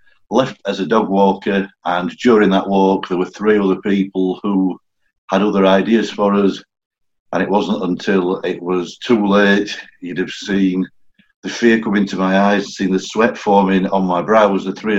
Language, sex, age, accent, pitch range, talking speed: English, male, 50-69, British, 90-100 Hz, 185 wpm